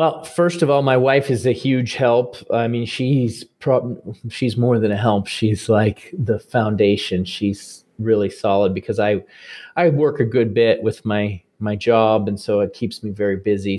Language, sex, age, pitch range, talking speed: English, male, 40-59, 110-125 Hz, 190 wpm